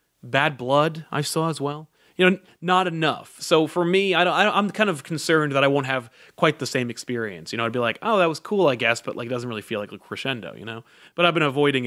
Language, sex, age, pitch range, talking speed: English, male, 30-49, 115-160 Hz, 260 wpm